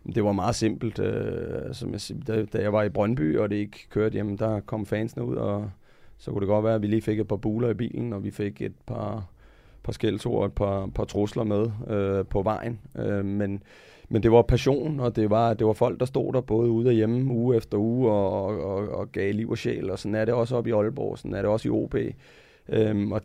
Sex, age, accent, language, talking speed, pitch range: male, 30-49, native, Danish, 235 wpm, 100-115 Hz